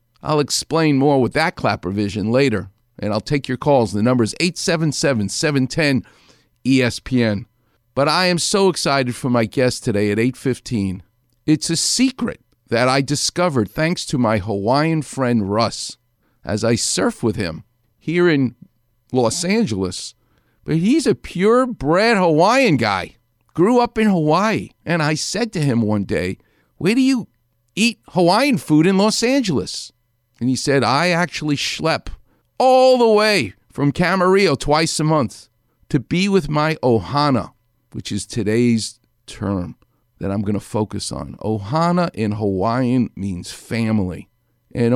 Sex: male